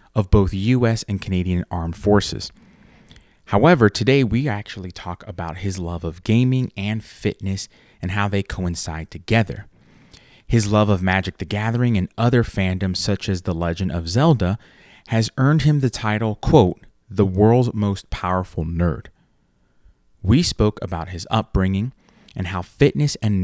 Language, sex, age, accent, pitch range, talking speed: English, male, 30-49, American, 90-115 Hz, 150 wpm